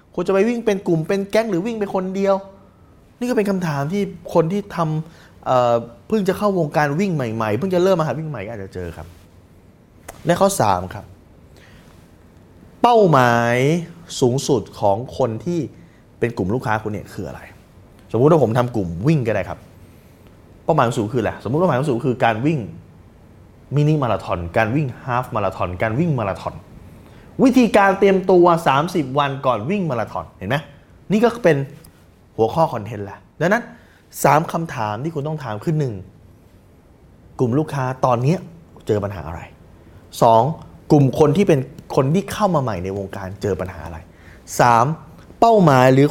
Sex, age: male, 20-39